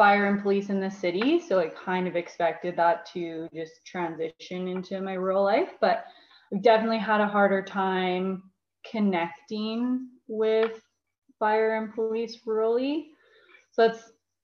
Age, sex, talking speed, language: 20-39, female, 140 wpm, English